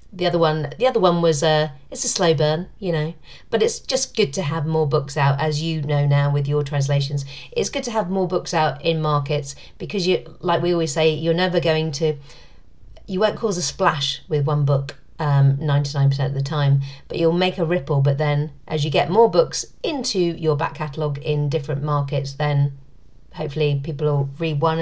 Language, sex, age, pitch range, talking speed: English, female, 40-59, 145-180 Hz, 220 wpm